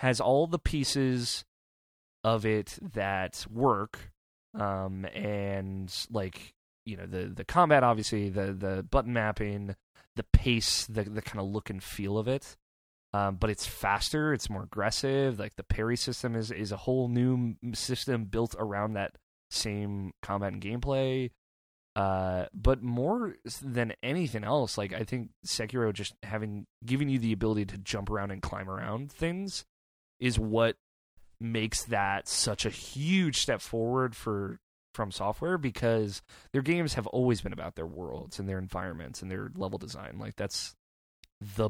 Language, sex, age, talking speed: English, male, 20-39, 160 wpm